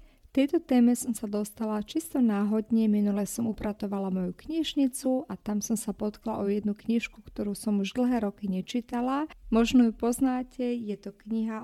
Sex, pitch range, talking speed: female, 205-240 Hz, 170 wpm